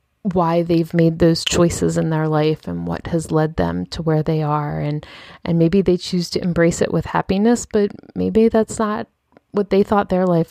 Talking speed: 205 wpm